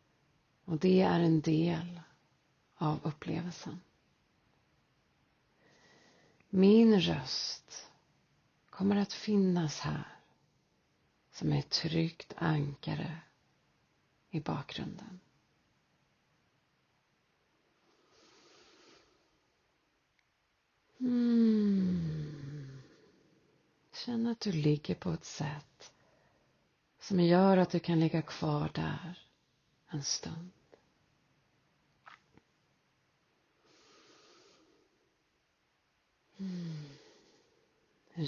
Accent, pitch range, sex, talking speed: native, 150-200 Hz, female, 60 wpm